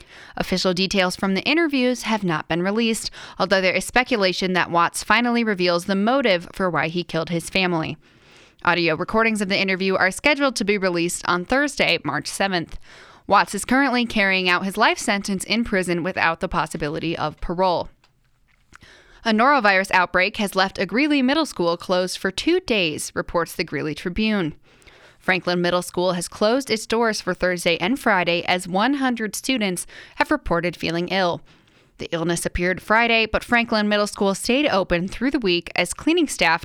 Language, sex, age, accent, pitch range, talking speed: English, female, 10-29, American, 180-225 Hz, 170 wpm